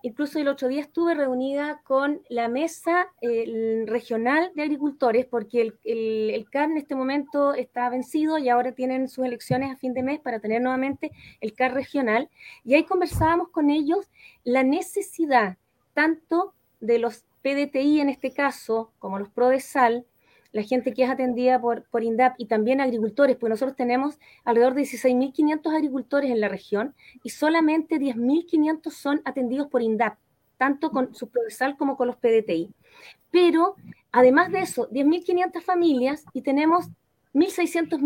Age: 20-39